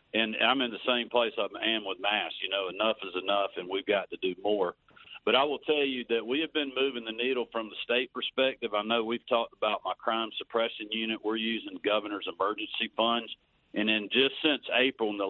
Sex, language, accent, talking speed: male, English, American, 230 wpm